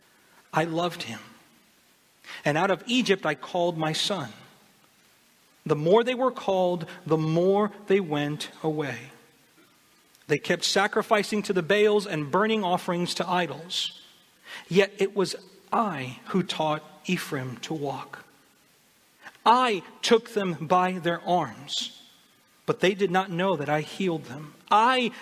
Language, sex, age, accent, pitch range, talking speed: English, male, 40-59, American, 175-245 Hz, 135 wpm